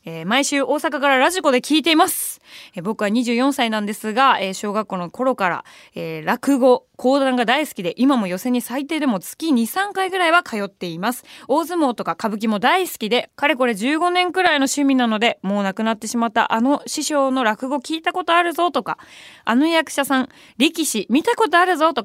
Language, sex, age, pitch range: Japanese, female, 20-39, 220-295 Hz